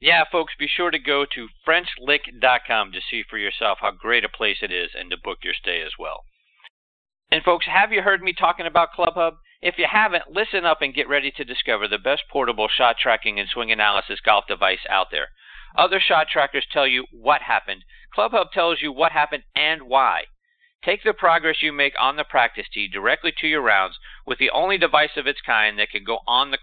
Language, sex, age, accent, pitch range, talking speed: English, male, 50-69, American, 125-170 Hz, 215 wpm